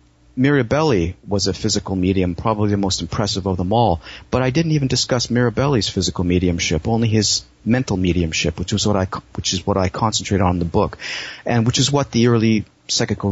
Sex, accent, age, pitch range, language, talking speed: male, American, 40-59, 95-110 Hz, English, 200 wpm